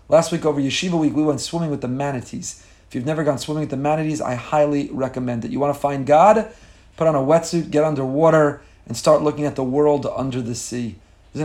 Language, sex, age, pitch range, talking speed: English, male, 30-49, 130-155 Hz, 230 wpm